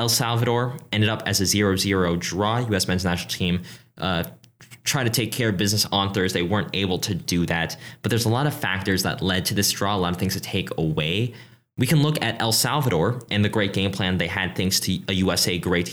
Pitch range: 95-125 Hz